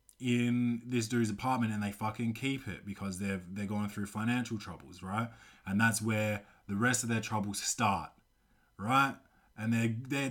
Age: 20-39